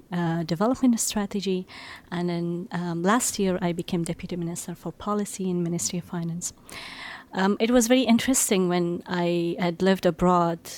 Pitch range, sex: 170-195 Hz, female